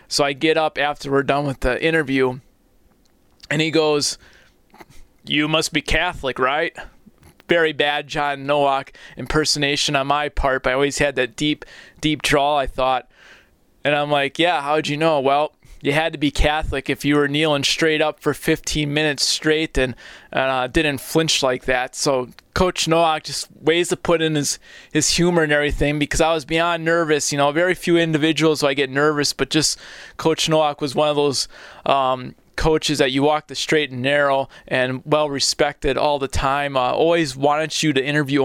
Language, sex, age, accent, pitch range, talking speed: English, male, 20-39, American, 140-155 Hz, 185 wpm